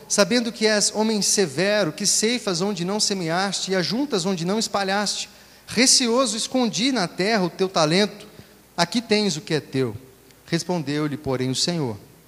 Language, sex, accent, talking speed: English, male, Brazilian, 155 wpm